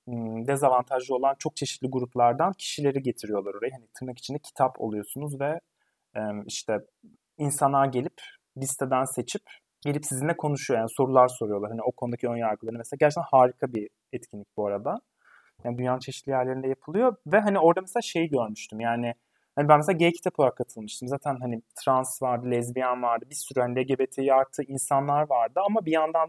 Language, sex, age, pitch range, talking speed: Turkish, male, 30-49, 125-160 Hz, 165 wpm